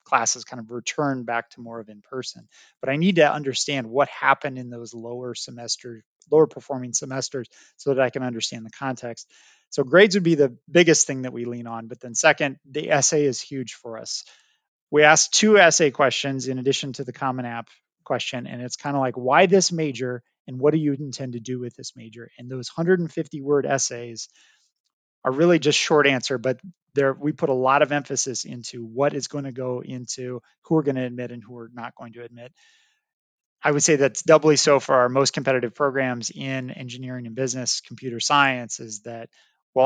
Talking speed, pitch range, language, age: 205 wpm, 125-150 Hz, English, 30-49